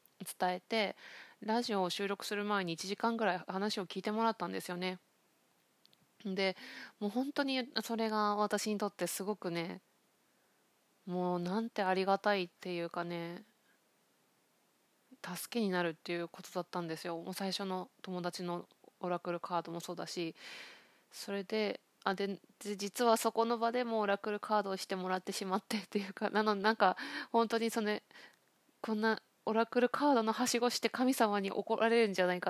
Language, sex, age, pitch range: Japanese, female, 20-39, 180-225 Hz